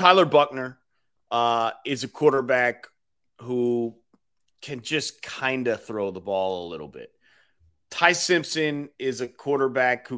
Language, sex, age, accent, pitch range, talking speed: English, male, 30-49, American, 120-185 Hz, 130 wpm